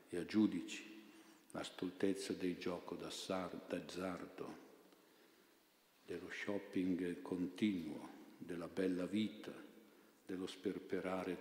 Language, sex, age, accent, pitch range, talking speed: Italian, male, 60-79, native, 90-105 Hz, 85 wpm